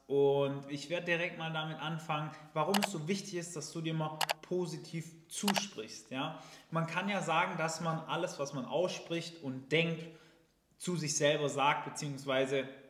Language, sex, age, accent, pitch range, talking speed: German, male, 20-39, German, 145-170 Hz, 165 wpm